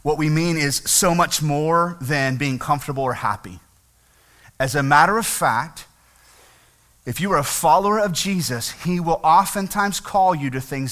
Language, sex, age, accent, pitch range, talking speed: English, male, 30-49, American, 135-190 Hz, 170 wpm